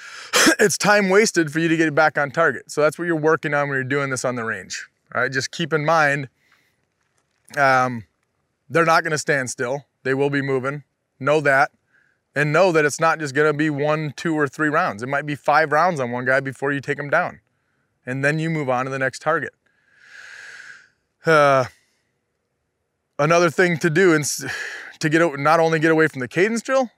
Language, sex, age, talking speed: English, male, 20-39, 215 wpm